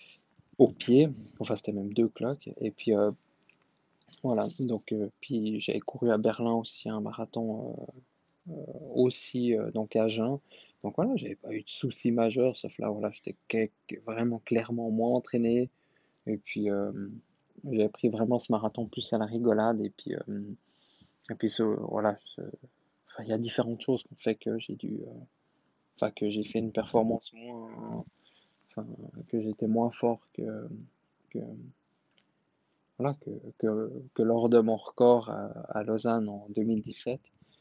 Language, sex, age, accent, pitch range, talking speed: French, male, 20-39, French, 110-125 Hz, 165 wpm